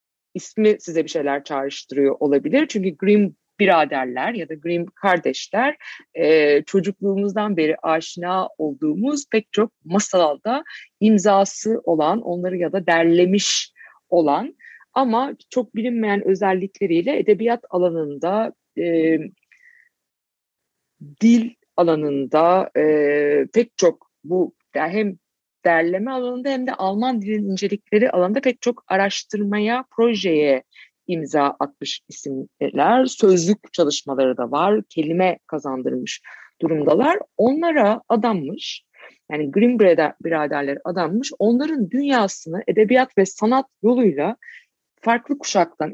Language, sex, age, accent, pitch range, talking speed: Turkish, female, 50-69, native, 165-235 Hz, 100 wpm